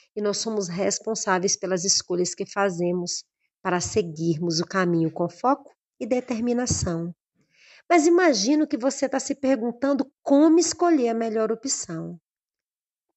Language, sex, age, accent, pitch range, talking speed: Portuguese, female, 40-59, Brazilian, 195-270 Hz, 130 wpm